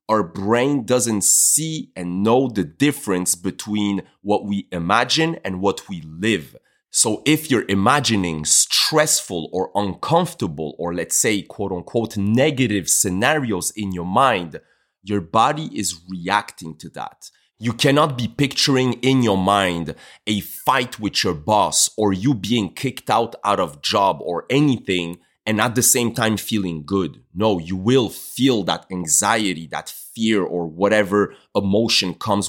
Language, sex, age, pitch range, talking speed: English, male, 30-49, 90-120 Hz, 150 wpm